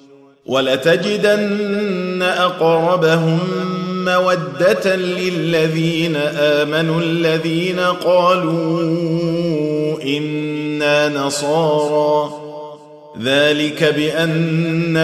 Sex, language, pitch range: male, Arabic, 150-180 Hz